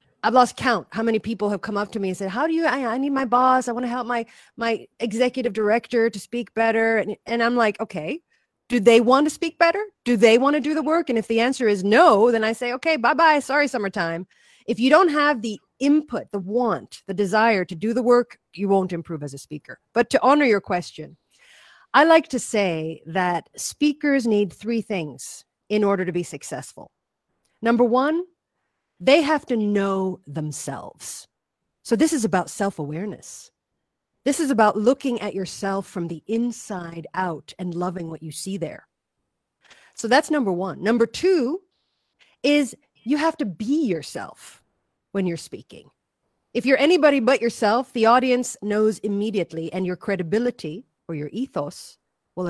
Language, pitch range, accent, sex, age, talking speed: English, 190-260 Hz, American, female, 40-59, 185 wpm